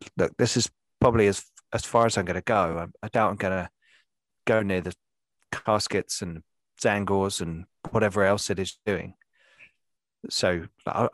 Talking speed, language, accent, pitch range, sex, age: 170 wpm, English, British, 90-120 Hz, male, 30-49